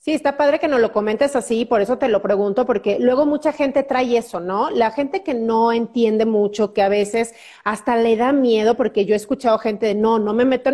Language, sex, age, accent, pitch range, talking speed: Spanish, female, 40-59, Mexican, 215-260 Hz, 240 wpm